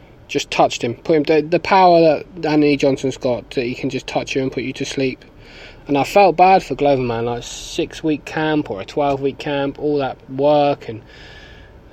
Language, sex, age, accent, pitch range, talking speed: English, male, 20-39, British, 130-155 Hz, 210 wpm